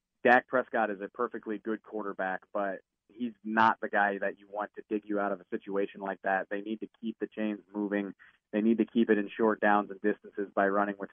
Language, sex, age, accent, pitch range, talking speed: English, male, 30-49, American, 100-115 Hz, 235 wpm